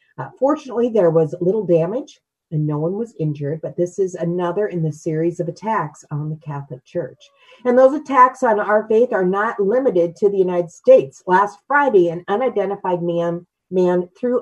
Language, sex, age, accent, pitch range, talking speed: English, female, 50-69, American, 155-205 Hz, 180 wpm